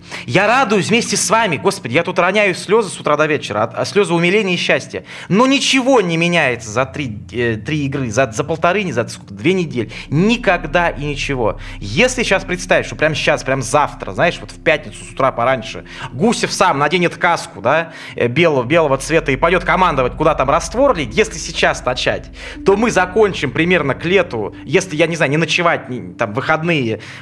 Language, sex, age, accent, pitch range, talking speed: Russian, male, 20-39, native, 135-190 Hz, 190 wpm